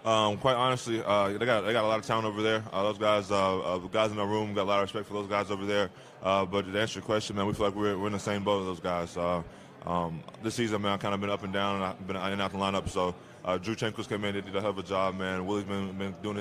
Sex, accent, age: male, American, 20-39